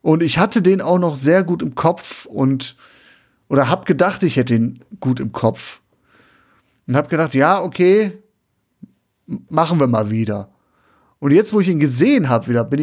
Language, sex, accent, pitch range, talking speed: German, male, German, 135-195 Hz, 180 wpm